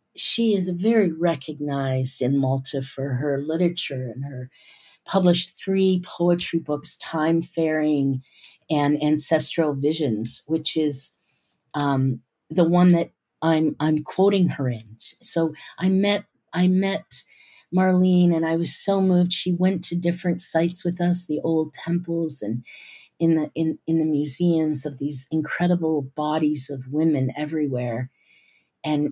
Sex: female